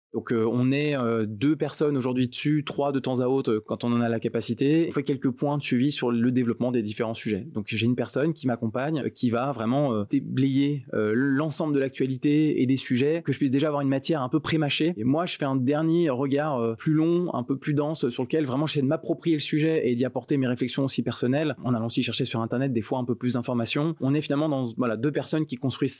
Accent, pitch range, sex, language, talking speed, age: French, 115-145 Hz, male, French, 260 wpm, 20-39